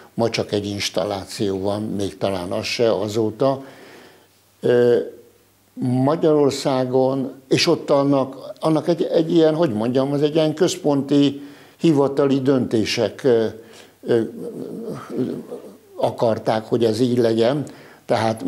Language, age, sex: Hungarian, 60-79, male